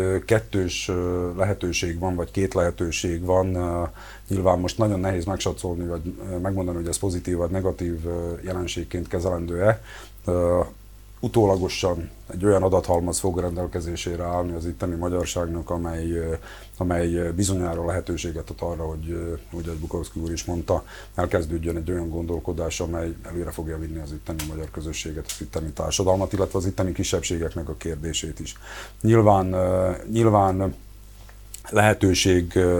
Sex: male